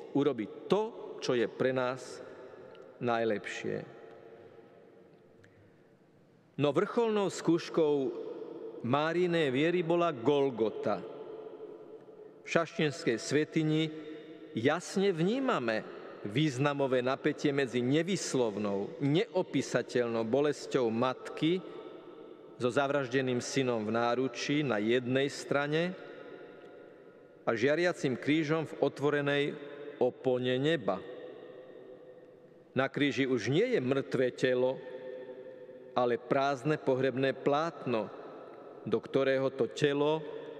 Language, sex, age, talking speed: Slovak, male, 40-59, 85 wpm